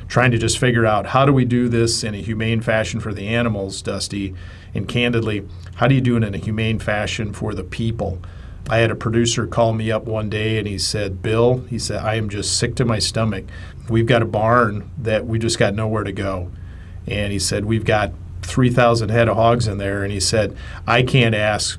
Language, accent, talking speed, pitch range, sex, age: English, American, 225 wpm, 100-120 Hz, male, 40-59